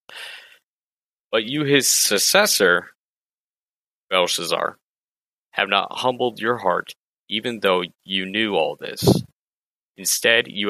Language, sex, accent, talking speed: English, male, American, 100 wpm